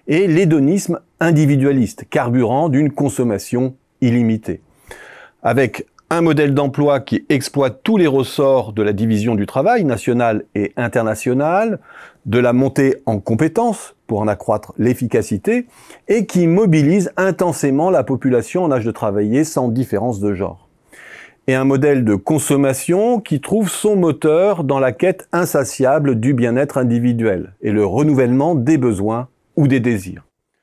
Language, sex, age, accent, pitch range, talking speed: French, male, 40-59, French, 115-155 Hz, 140 wpm